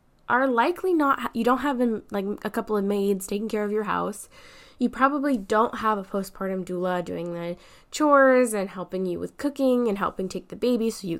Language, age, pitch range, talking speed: English, 10-29, 185-245 Hz, 205 wpm